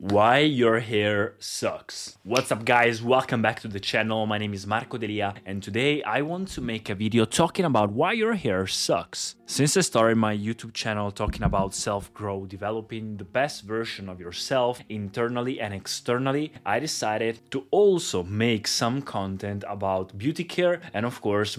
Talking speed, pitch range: 170 wpm, 100-125 Hz